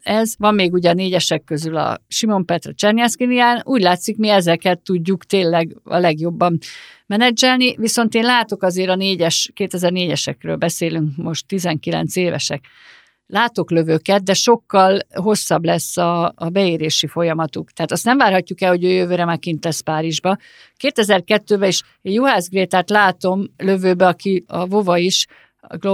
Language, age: Hungarian, 50-69